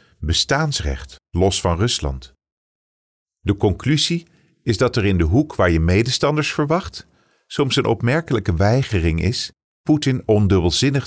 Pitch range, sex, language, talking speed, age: 85-120 Hz, male, English, 125 wpm, 50-69